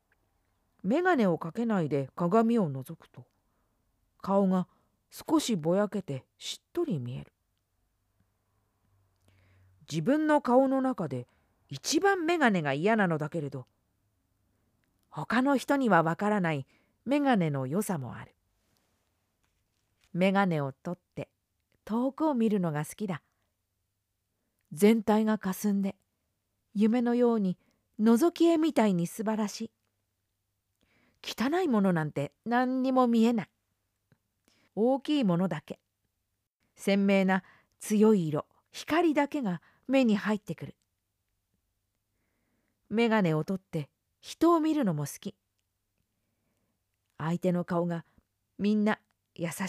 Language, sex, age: Japanese, female, 40-59